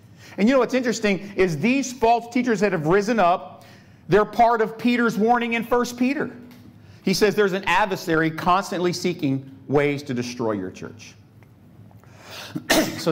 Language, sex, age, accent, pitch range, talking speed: English, male, 50-69, American, 125-210 Hz, 155 wpm